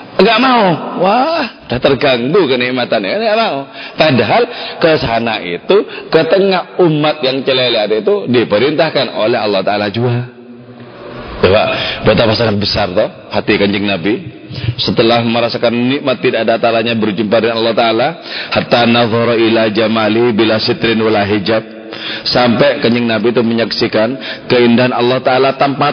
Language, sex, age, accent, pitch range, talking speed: Indonesian, male, 30-49, native, 105-130 Hz, 125 wpm